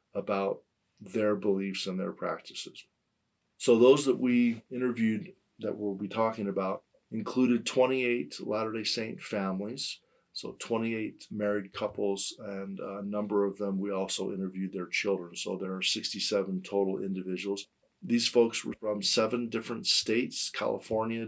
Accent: American